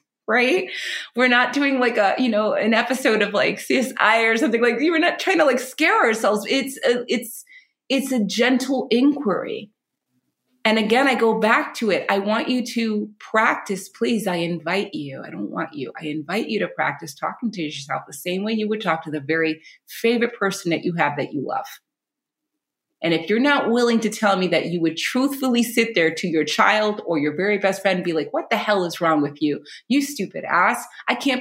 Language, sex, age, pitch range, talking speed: English, female, 30-49, 180-255 Hz, 210 wpm